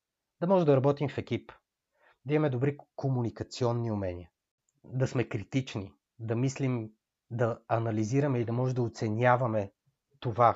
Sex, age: male, 30-49